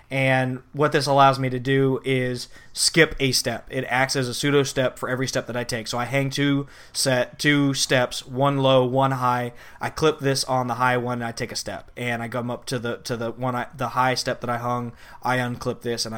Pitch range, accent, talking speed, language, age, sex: 120-135 Hz, American, 240 wpm, English, 20-39, male